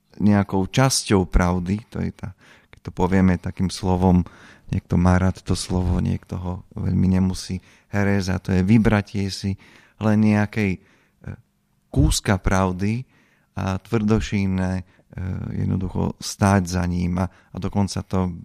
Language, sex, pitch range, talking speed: Slovak, male, 95-105 Hz, 125 wpm